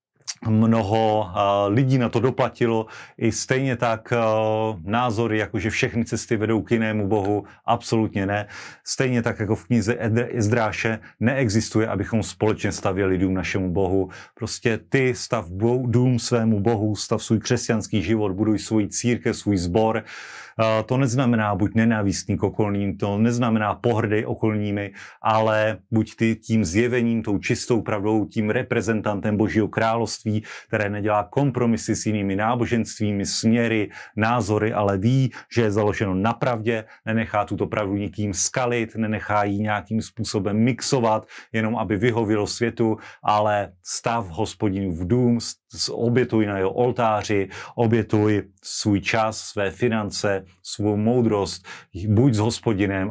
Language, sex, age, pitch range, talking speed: Slovak, male, 30-49, 100-115 Hz, 130 wpm